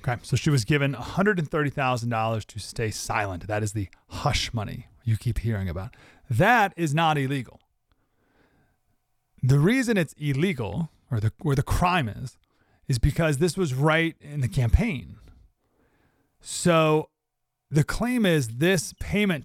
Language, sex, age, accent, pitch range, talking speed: English, male, 30-49, American, 120-170 Hz, 140 wpm